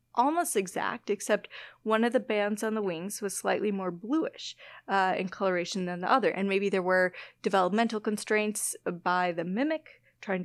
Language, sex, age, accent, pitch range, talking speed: English, female, 30-49, American, 180-220 Hz, 170 wpm